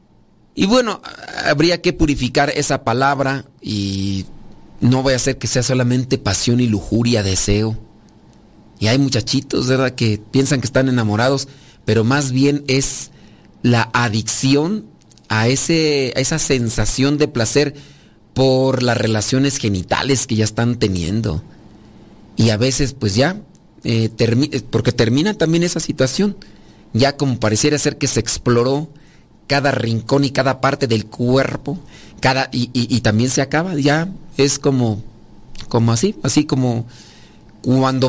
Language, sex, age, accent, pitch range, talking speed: Spanish, male, 40-59, Mexican, 110-140 Hz, 140 wpm